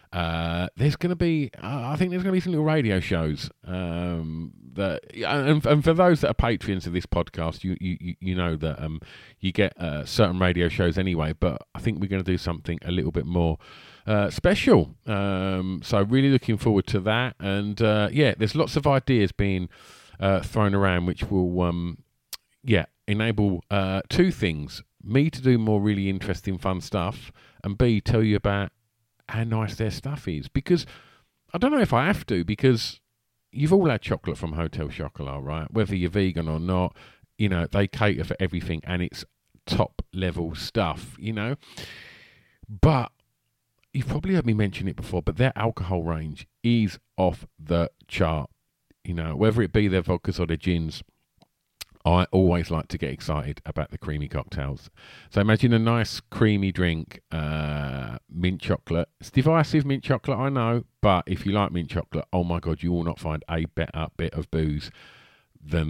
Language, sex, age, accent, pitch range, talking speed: English, male, 40-59, British, 85-115 Hz, 185 wpm